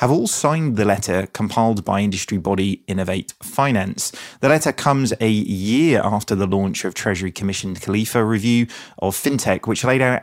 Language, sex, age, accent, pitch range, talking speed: English, male, 30-49, British, 100-125 Hz, 165 wpm